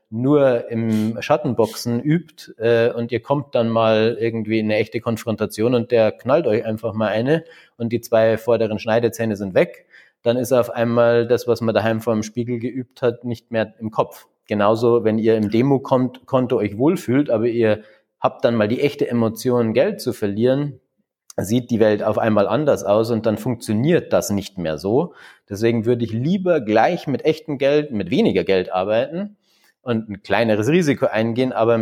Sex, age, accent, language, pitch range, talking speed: male, 30-49, German, German, 110-135 Hz, 185 wpm